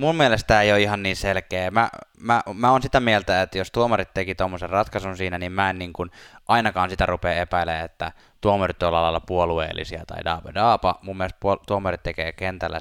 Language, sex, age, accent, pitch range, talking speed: Finnish, male, 20-39, native, 85-100 Hz, 195 wpm